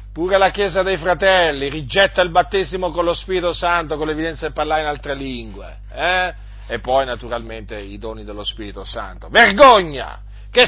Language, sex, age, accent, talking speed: Italian, male, 40-59, native, 170 wpm